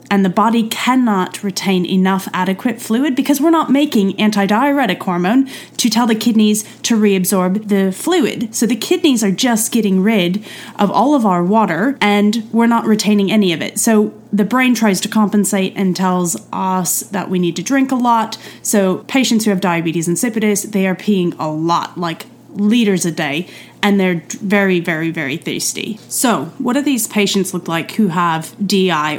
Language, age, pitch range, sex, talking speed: English, 30-49, 185-230 Hz, female, 180 wpm